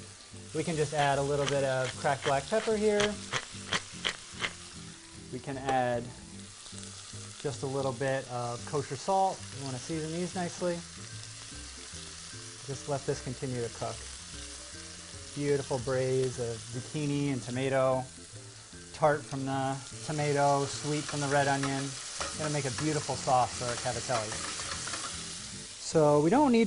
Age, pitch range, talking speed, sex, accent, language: 30-49, 120-150 Hz, 135 wpm, male, American, English